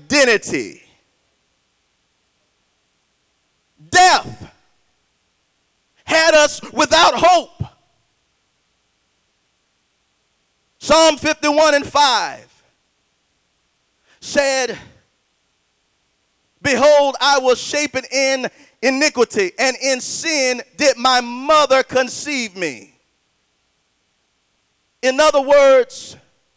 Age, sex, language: 40-59, male, English